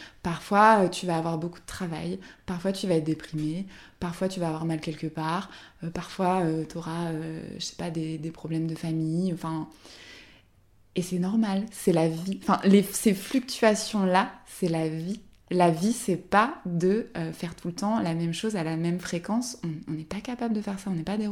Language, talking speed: French, 210 wpm